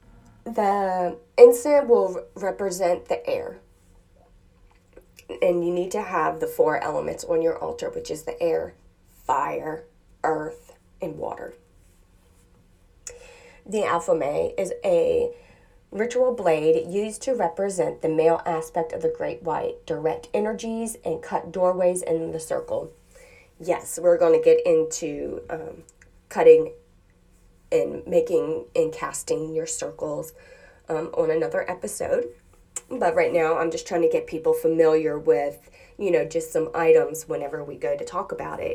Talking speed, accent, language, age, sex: 140 wpm, American, English, 30-49, female